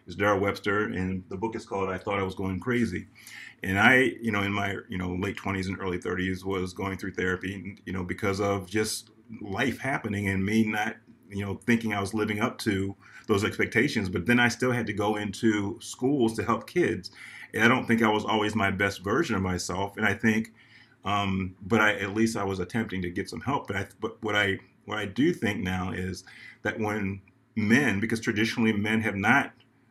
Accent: American